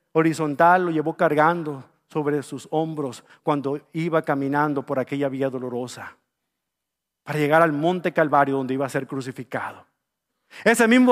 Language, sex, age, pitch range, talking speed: English, male, 40-59, 155-235 Hz, 140 wpm